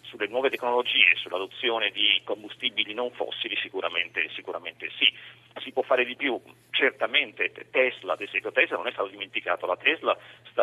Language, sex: Italian, male